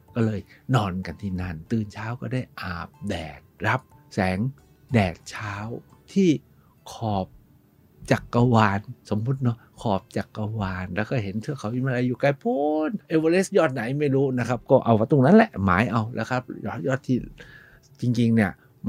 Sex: male